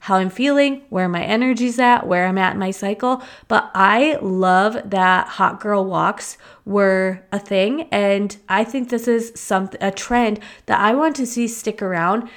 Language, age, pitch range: English, 20-39, 195-240 Hz